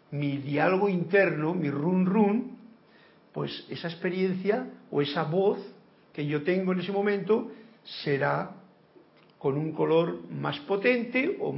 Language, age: Spanish, 50-69